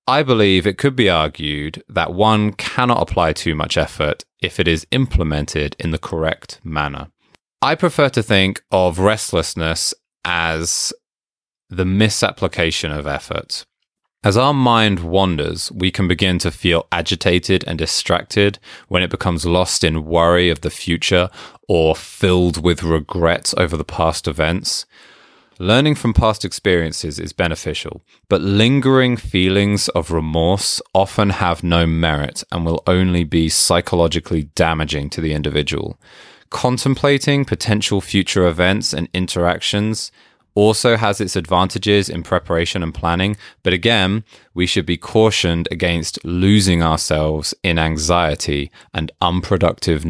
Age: 20-39